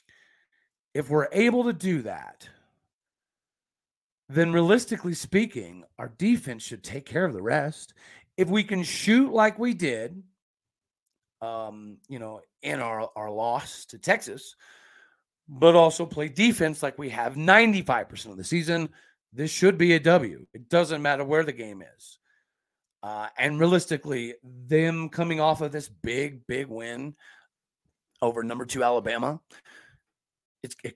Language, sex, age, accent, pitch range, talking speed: English, male, 40-59, American, 120-180 Hz, 140 wpm